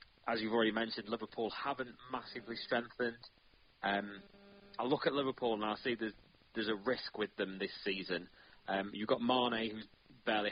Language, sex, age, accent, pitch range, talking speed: English, male, 20-39, British, 100-120 Hz, 170 wpm